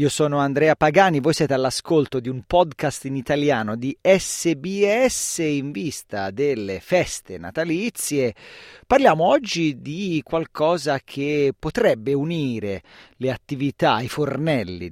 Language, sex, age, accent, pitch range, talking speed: Italian, male, 40-59, native, 120-160 Hz, 120 wpm